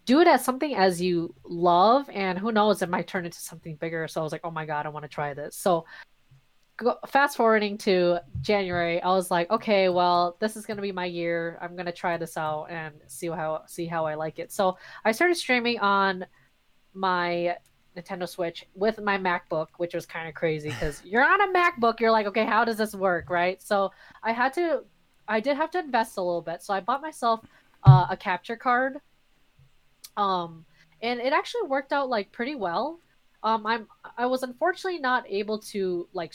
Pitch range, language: 170-230 Hz, English